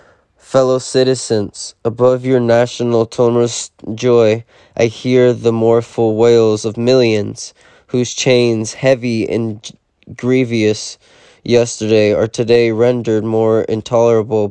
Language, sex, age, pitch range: English, male, 20-39, 110-120 Hz